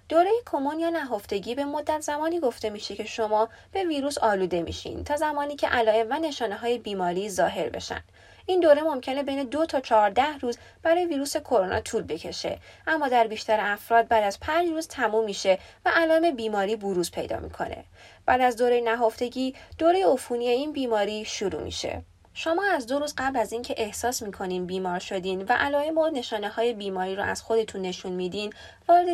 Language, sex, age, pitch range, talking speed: Persian, female, 20-39, 205-295 Hz, 180 wpm